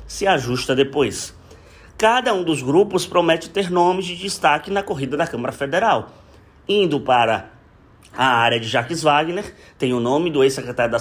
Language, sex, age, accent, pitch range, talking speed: Portuguese, male, 20-39, Brazilian, 120-175 Hz, 165 wpm